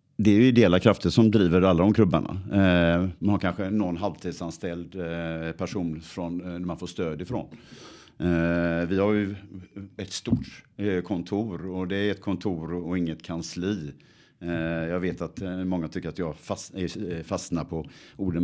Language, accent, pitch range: Swedish, Norwegian, 85-105 Hz